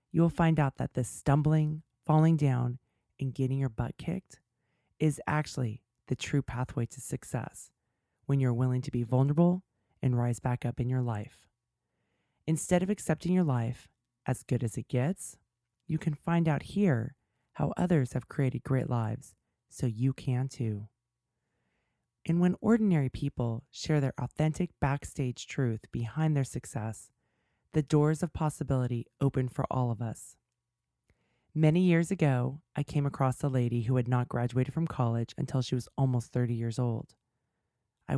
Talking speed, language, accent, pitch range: 160 wpm, English, American, 120-150 Hz